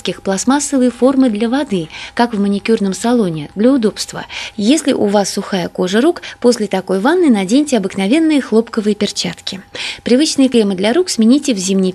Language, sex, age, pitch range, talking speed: Russian, female, 20-39, 195-255 Hz, 150 wpm